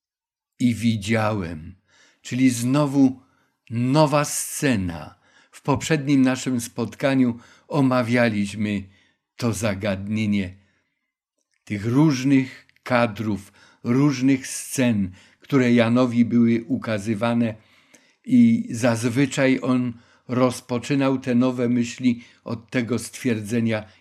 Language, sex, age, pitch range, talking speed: Polish, male, 50-69, 110-135 Hz, 80 wpm